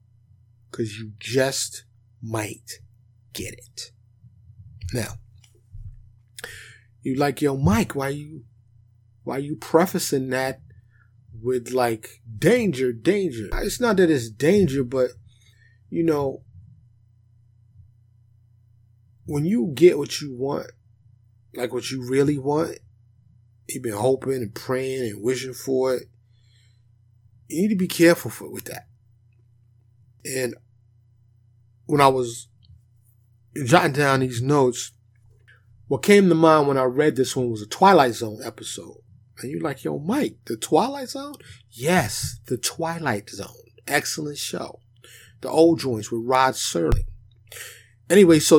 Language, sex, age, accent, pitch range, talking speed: English, male, 30-49, American, 115-135 Hz, 125 wpm